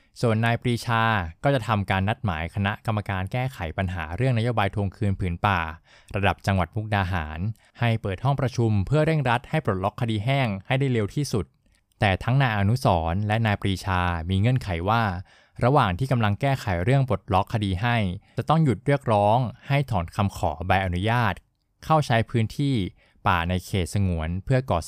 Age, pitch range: 20-39, 95-120 Hz